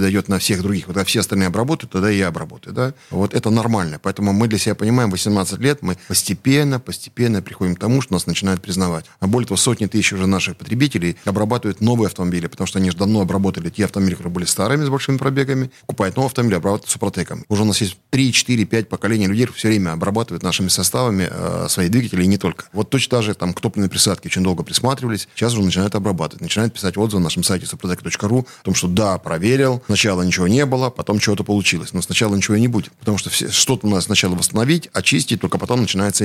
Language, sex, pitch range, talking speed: Russian, male, 95-115 Hz, 220 wpm